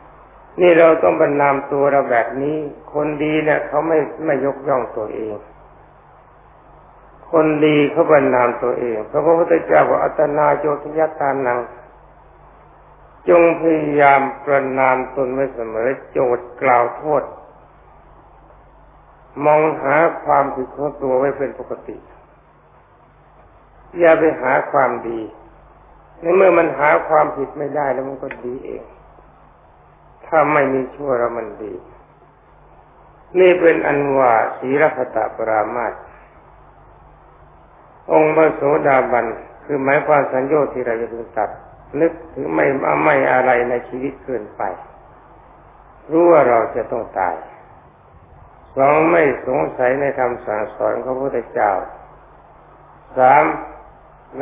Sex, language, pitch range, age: male, Thai, 125-155 Hz, 60-79